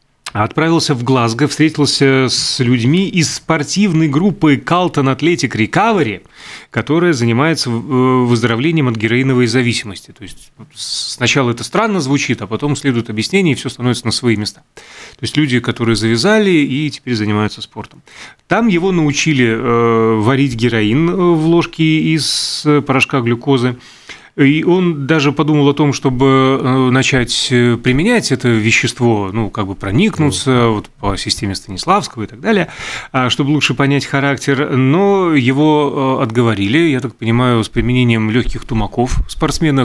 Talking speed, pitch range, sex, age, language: 135 wpm, 115-150 Hz, male, 30-49, Russian